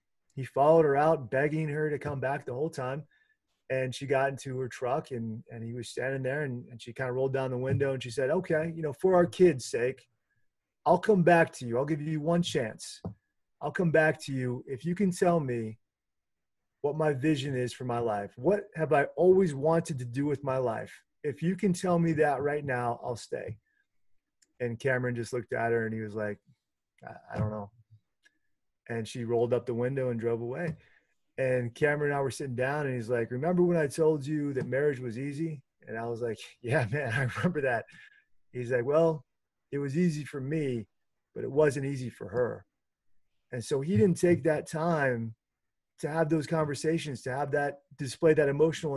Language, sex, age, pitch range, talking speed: English, male, 30-49, 125-160 Hz, 210 wpm